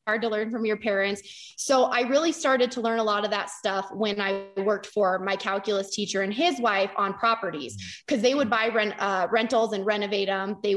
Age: 20-39